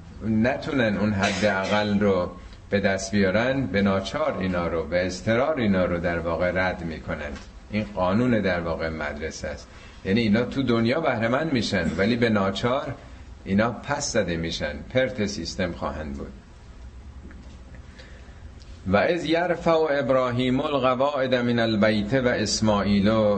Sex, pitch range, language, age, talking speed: male, 85-110 Hz, Persian, 50-69, 135 wpm